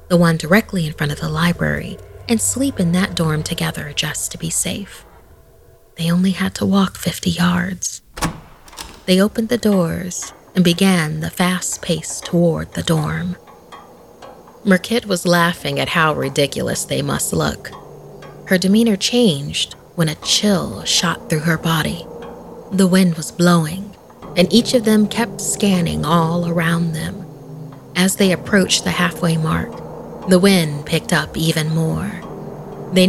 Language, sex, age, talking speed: English, female, 30-49, 150 wpm